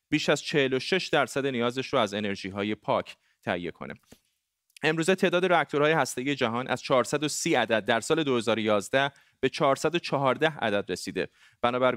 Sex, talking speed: male, 135 wpm